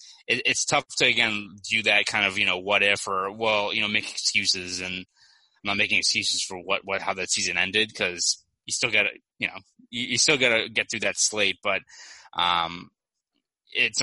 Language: English